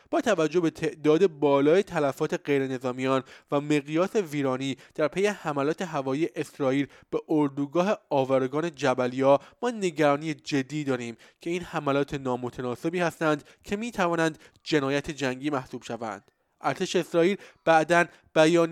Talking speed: 125 wpm